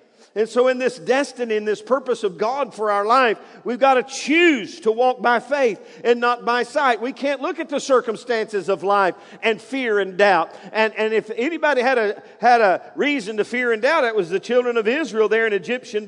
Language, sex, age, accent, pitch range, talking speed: English, male, 50-69, American, 185-265 Hz, 215 wpm